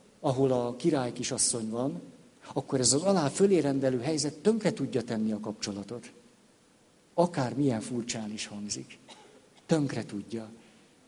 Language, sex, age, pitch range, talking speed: Hungarian, male, 60-79, 115-160 Hz, 120 wpm